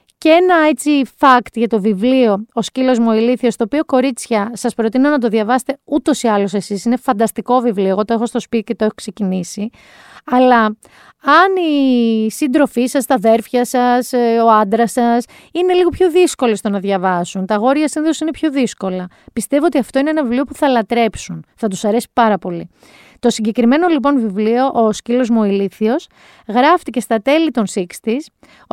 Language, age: Greek, 30-49